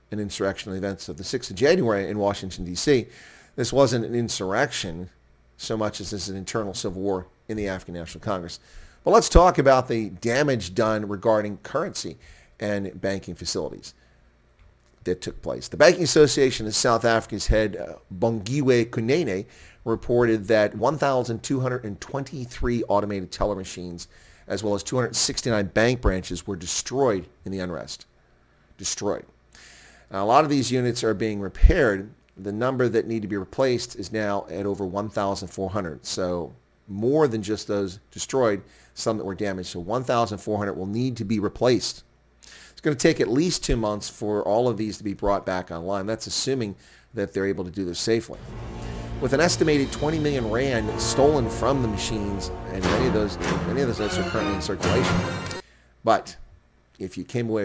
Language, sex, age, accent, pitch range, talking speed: English, male, 40-59, American, 95-115 Hz, 165 wpm